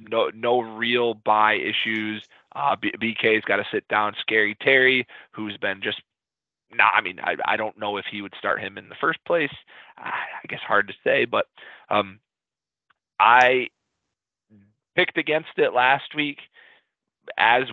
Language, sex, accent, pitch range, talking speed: English, male, American, 110-125 Hz, 170 wpm